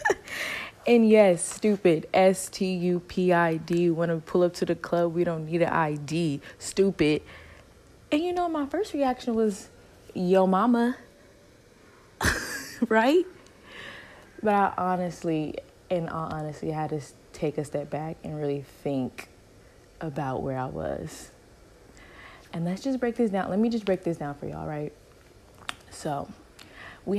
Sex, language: female, English